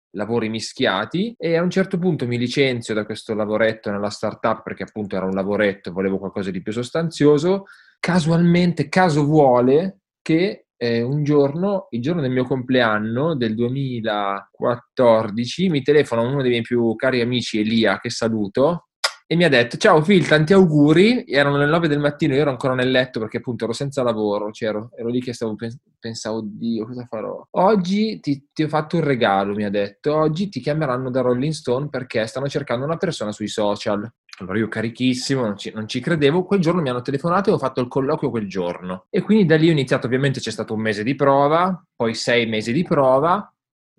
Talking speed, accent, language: 195 wpm, native, Italian